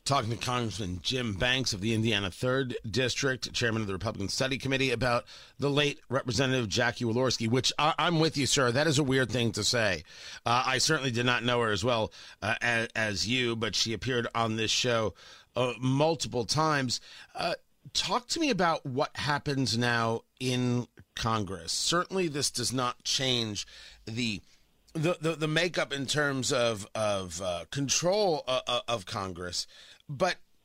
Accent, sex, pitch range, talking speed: American, male, 120-160 Hz, 170 wpm